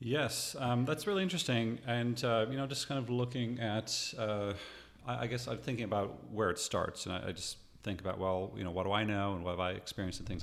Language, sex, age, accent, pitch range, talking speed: English, male, 40-59, American, 95-120 Hz, 255 wpm